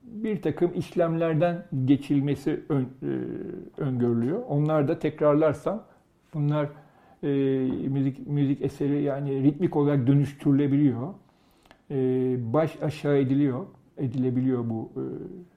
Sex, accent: male, native